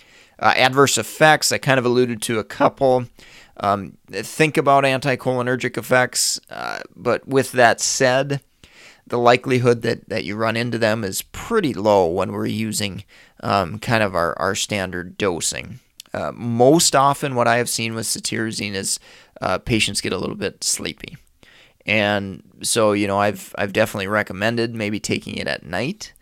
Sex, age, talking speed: male, 30-49, 160 wpm